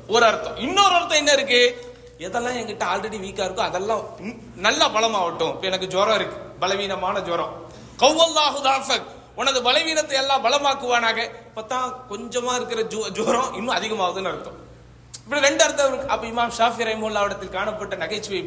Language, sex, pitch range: Tamil, male, 200-280 Hz